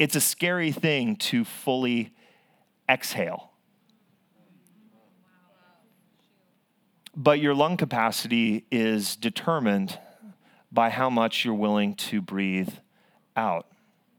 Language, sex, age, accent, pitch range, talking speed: English, male, 30-49, American, 130-210 Hz, 90 wpm